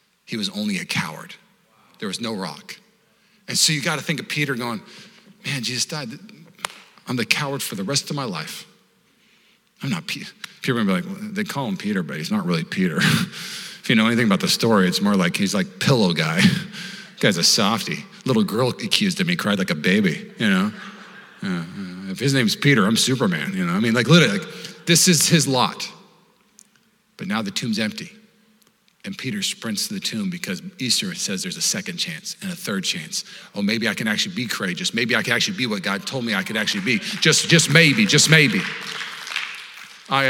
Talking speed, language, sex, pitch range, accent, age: 205 wpm, English, male, 165-205 Hz, American, 40-59